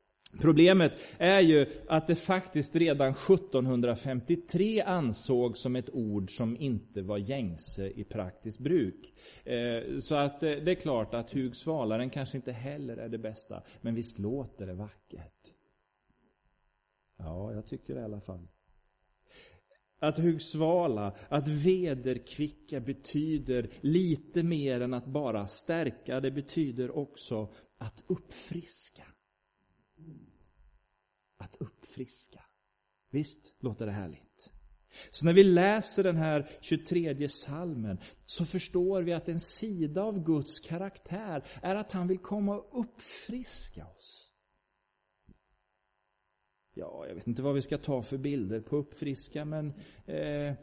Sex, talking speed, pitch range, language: male, 125 wpm, 105-160 Hz, Swedish